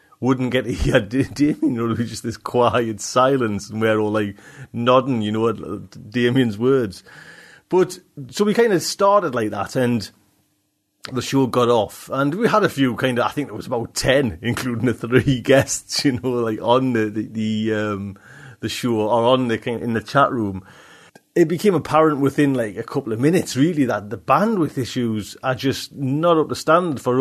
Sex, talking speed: male, 205 wpm